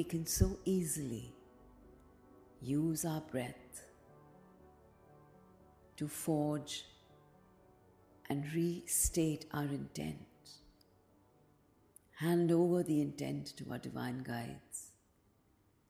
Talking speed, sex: 80 wpm, female